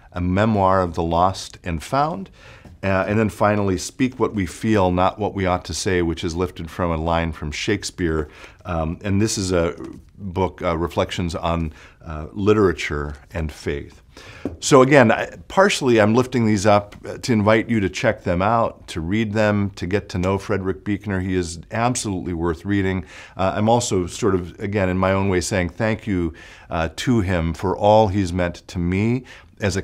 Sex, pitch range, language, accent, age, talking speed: male, 90-105 Hz, English, American, 50-69, 190 wpm